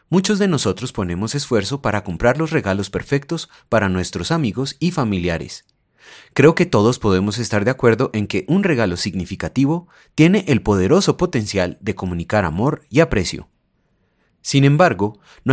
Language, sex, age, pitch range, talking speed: Spanish, male, 30-49, 100-150 Hz, 150 wpm